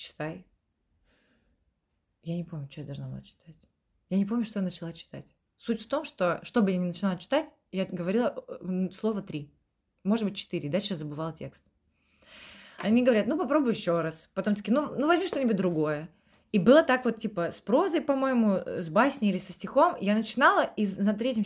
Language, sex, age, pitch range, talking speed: Russian, female, 20-39, 170-245 Hz, 185 wpm